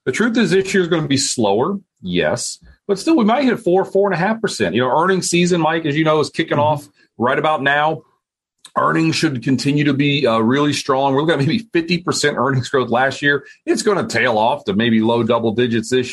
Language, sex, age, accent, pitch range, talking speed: English, male, 40-59, American, 130-195 Hz, 240 wpm